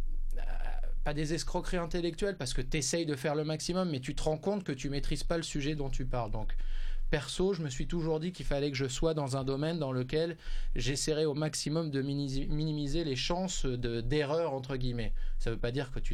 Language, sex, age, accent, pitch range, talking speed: French, male, 20-39, French, 115-155 Hz, 225 wpm